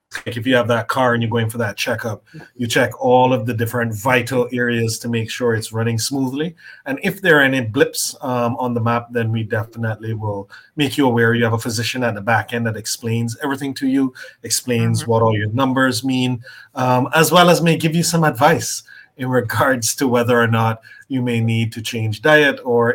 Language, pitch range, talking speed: English, 115-135 Hz, 220 wpm